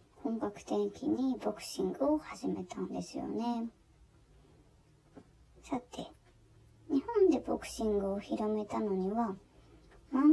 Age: 20-39